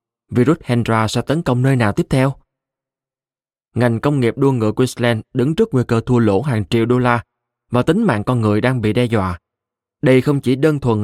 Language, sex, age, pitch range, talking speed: Vietnamese, male, 20-39, 110-135 Hz, 210 wpm